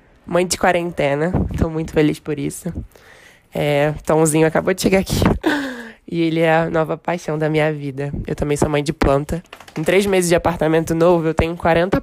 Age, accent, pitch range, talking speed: 20-39, Brazilian, 150-170 Hz, 190 wpm